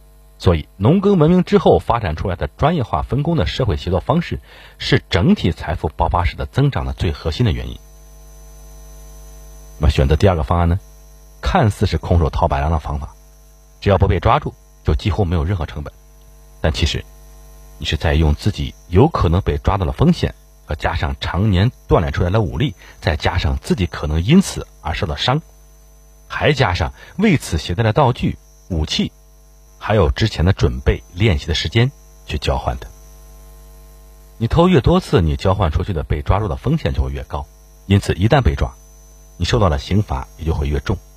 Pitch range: 75-100 Hz